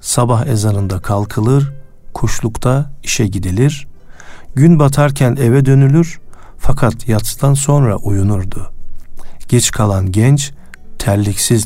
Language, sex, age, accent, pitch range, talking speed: Turkish, male, 50-69, native, 100-140 Hz, 95 wpm